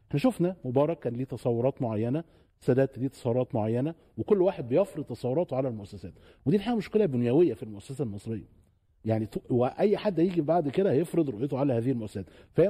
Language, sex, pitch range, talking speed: Arabic, male, 115-155 Hz, 170 wpm